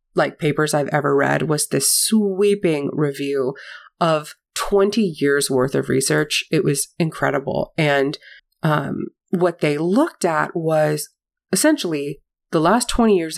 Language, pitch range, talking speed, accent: English, 150-205 Hz, 135 wpm, American